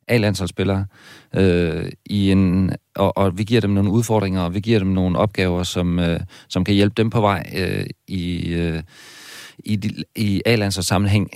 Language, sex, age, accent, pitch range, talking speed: Danish, male, 40-59, native, 95-115 Hz, 165 wpm